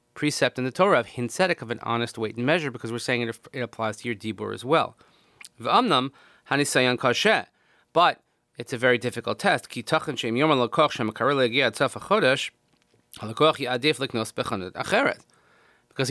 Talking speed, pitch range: 110 wpm, 115-140 Hz